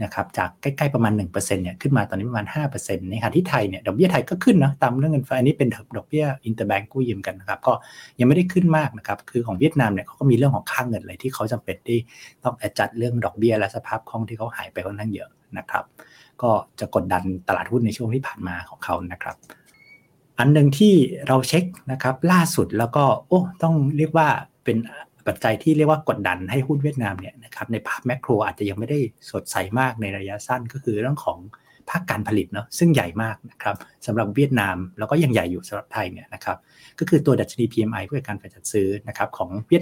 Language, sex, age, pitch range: Thai, male, 60-79, 105-140 Hz